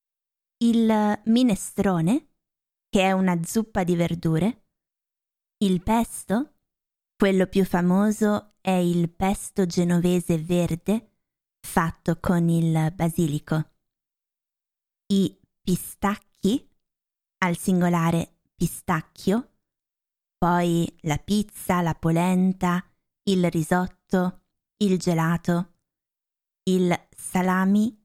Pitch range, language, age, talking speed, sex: 170-200 Hz, Italian, 20-39, 80 wpm, female